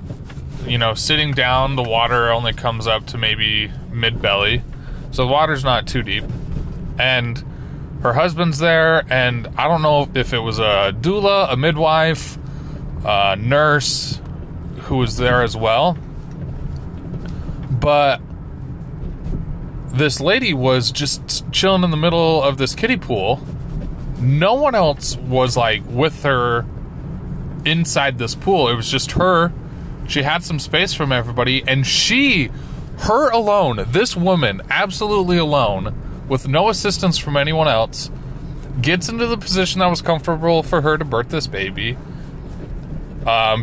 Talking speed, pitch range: 140 wpm, 120-155 Hz